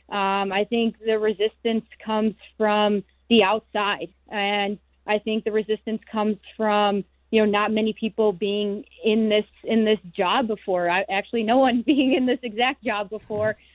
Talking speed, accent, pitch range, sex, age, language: 165 wpm, American, 200-225 Hz, female, 20-39, English